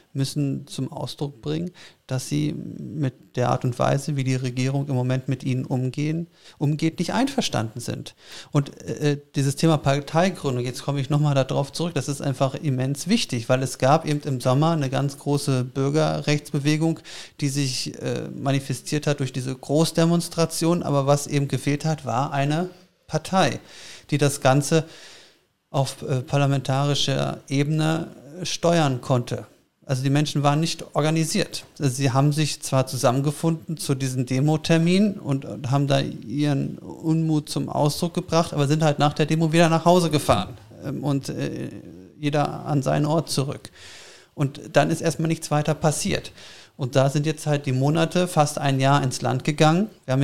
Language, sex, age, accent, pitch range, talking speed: German, male, 40-59, German, 135-160 Hz, 160 wpm